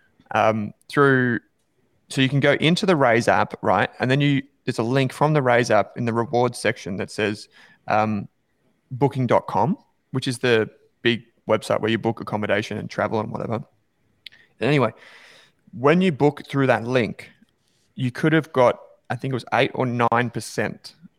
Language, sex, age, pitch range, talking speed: English, male, 20-39, 115-135 Hz, 175 wpm